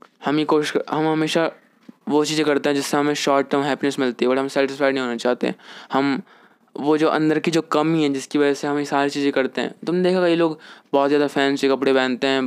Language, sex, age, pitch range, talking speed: English, male, 20-39, 135-165 Hz, 235 wpm